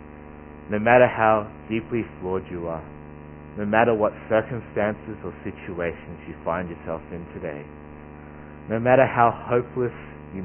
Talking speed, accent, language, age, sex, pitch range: 130 wpm, Australian, English, 60-79, male, 75-105 Hz